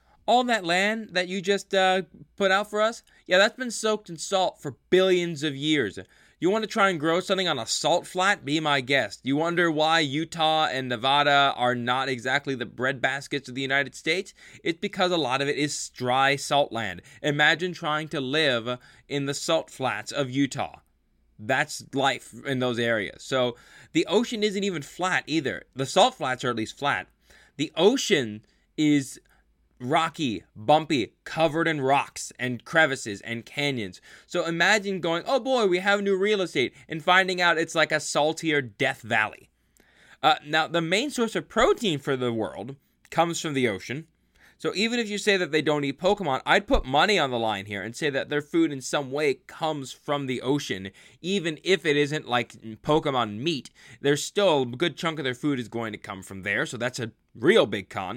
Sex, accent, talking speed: male, American, 195 wpm